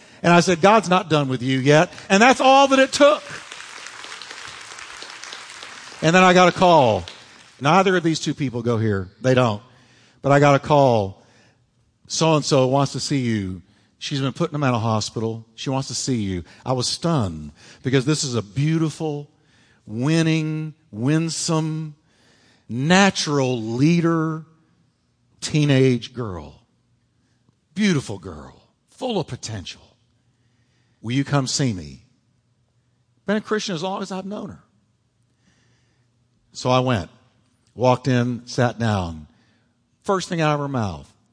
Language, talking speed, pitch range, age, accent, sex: English, 140 wpm, 110-150 Hz, 50-69, American, male